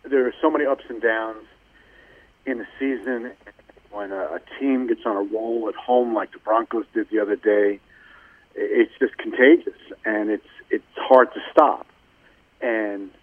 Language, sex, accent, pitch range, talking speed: English, male, American, 110-155 Hz, 165 wpm